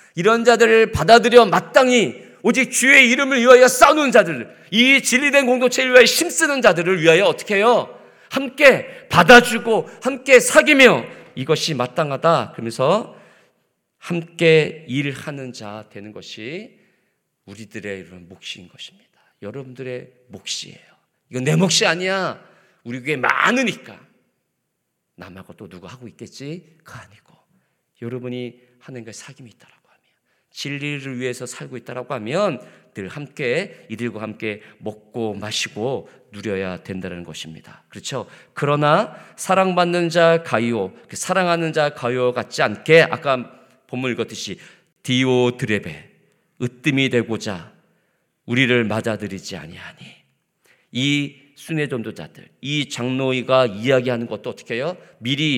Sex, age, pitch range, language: male, 40-59, 120-185 Hz, Korean